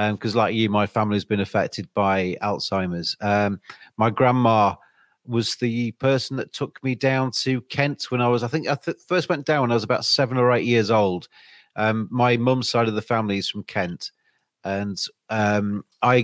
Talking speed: 200 wpm